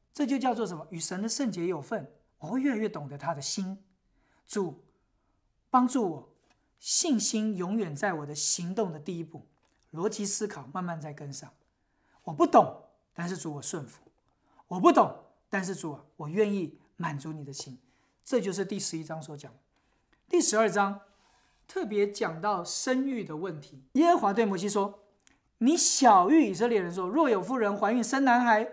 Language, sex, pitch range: English, male, 180-245 Hz